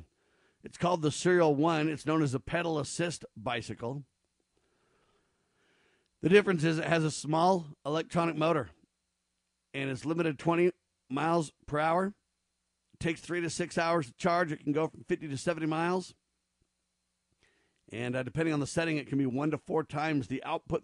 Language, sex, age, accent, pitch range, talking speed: English, male, 50-69, American, 135-170 Hz, 170 wpm